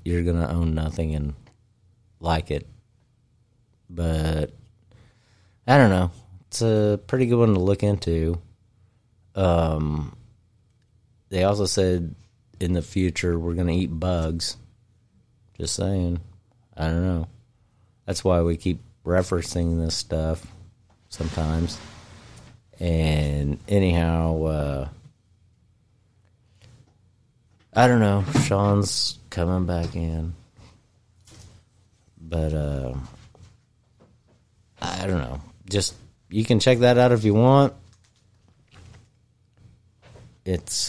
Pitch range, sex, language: 85-110 Hz, male, English